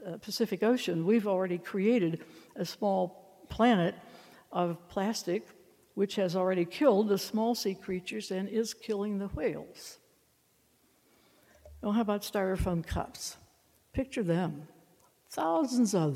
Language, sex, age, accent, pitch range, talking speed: English, female, 60-79, American, 165-210 Hz, 120 wpm